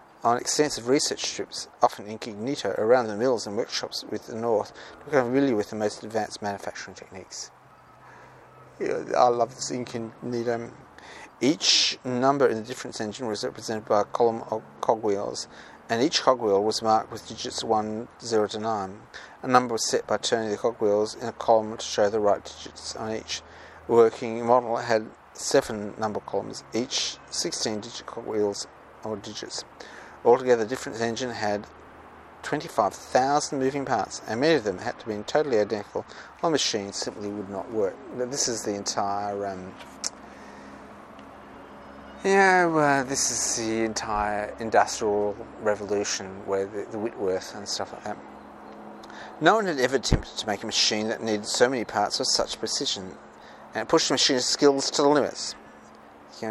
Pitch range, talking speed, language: 105-125 Hz, 165 wpm, English